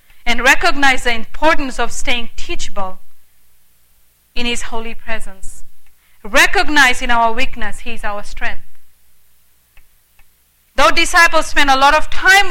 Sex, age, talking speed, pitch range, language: female, 40-59, 125 wpm, 205-315 Hz, English